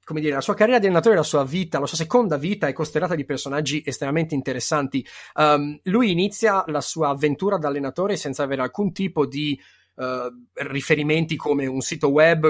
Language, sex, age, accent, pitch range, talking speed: Italian, male, 30-49, native, 140-220 Hz, 185 wpm